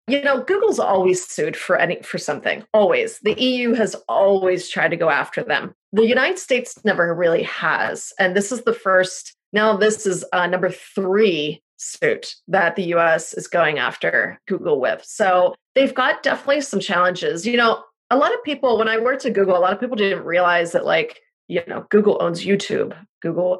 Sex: female